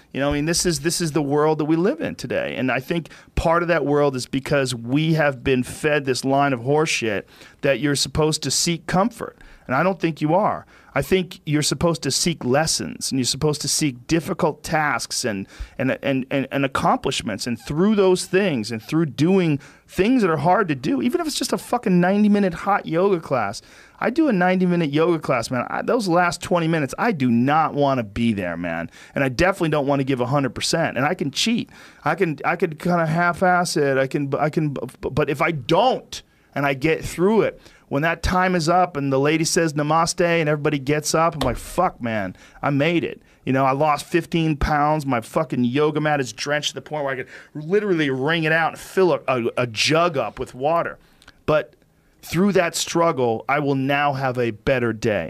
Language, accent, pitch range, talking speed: English, American, 135-170 Hz, 220 wpm